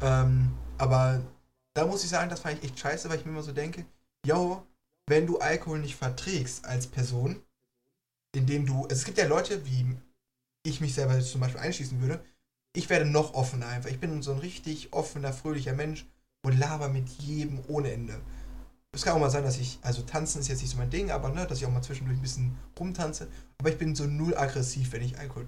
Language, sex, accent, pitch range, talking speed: German, male, German, 130-150 Hz, 220 wpm